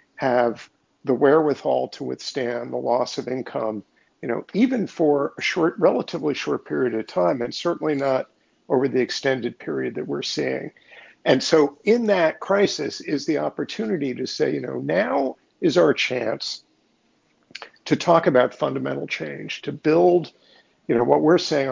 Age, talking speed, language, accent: 50-69, 160 wpm, English, American